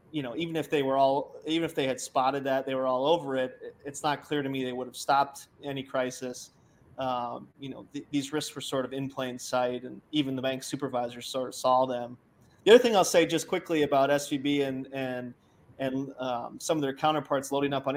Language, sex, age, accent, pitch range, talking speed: English, male, 20-39, American, 130-150 Hz, 230 wpm